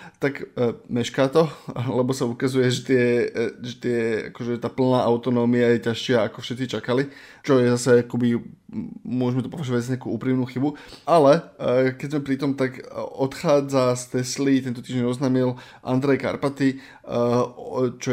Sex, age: male, 20-39